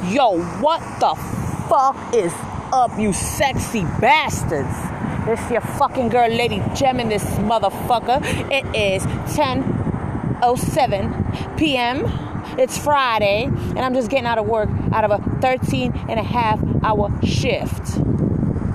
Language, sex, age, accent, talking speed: English, female, 30-49, American, 125 wpm